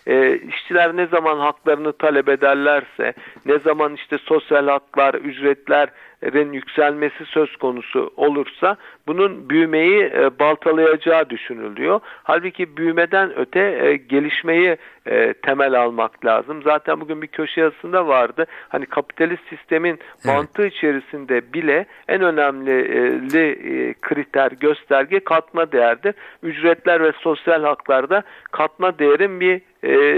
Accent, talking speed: native, 115 wpm